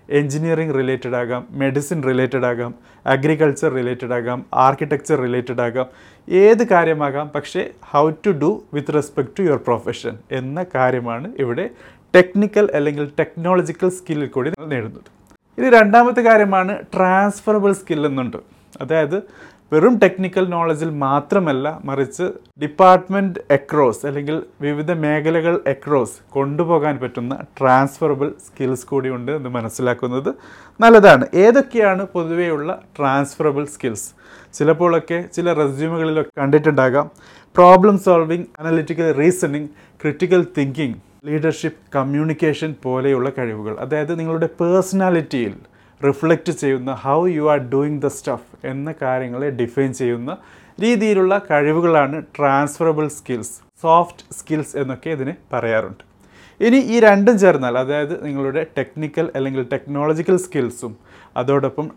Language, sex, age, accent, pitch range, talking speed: Malayalam, male, 30-49, native, 135-175 Hz, 105 wpm